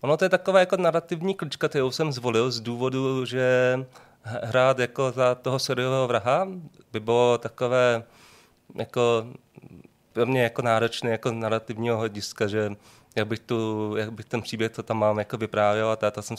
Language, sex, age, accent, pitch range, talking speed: Czech, male, 30-49, native, 105-120 Hz, 170 wpm